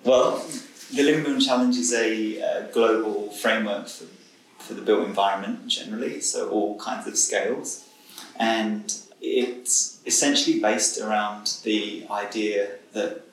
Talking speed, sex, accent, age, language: 130 wpm, male, British, 20-39, English